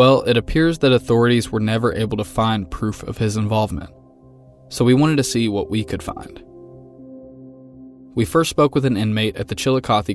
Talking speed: 190 wpm